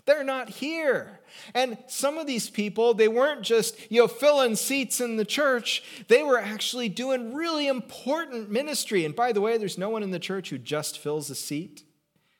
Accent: American